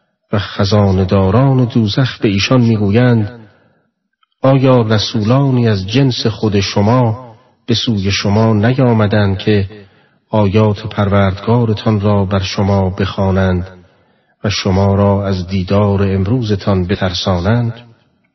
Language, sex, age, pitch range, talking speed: Persian, male, 40-59, 95-115 Hz, 100 wpm